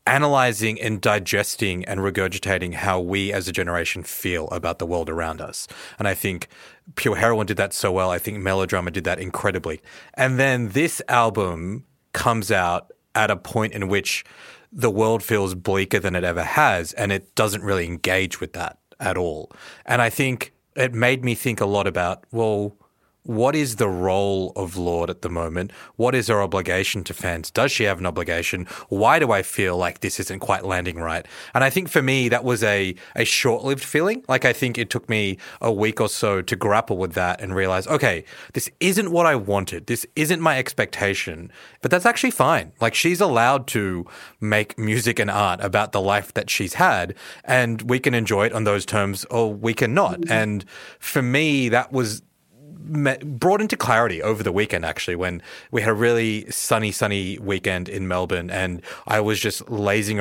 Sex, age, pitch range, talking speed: male, 30-49, 95-120 Hz, 190 wpm